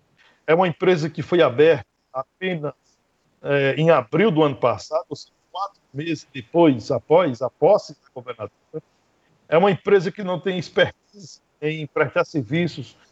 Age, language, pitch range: 60-79, Portuguese, 135-180 Hz